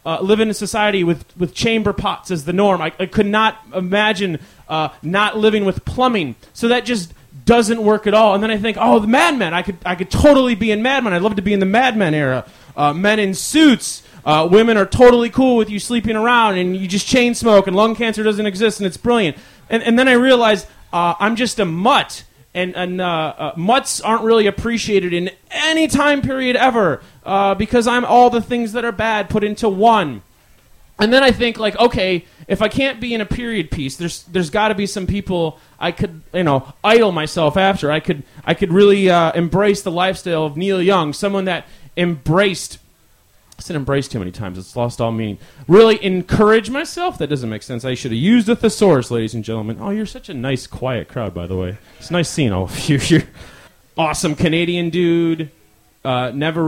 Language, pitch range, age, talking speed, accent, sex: English, 135-215 Hz, 30-49, 215 wpm, American, male